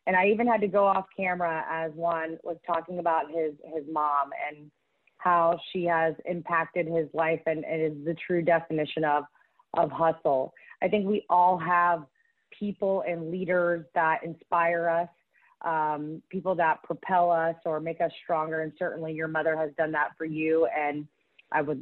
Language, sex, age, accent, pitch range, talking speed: English, female, 30-49, American, 160-185 Hz, 175 wpm